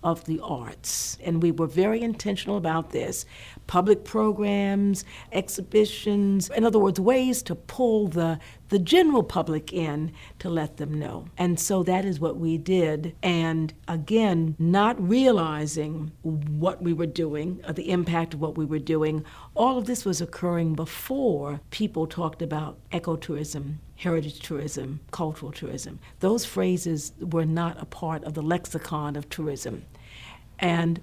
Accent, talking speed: American, 150 wpm